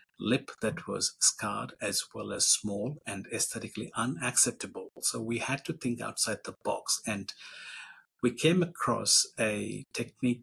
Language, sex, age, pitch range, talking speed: English, male, 50-69, 105-135 Hz, 145 wpm